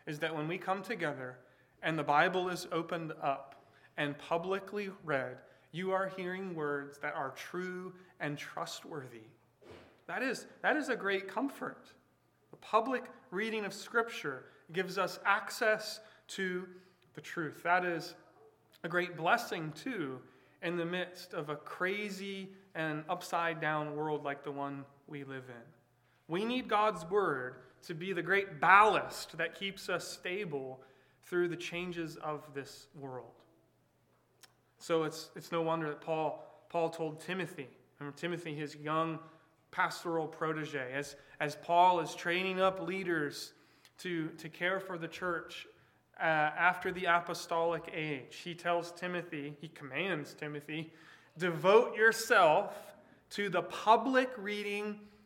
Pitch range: 150-185 Hz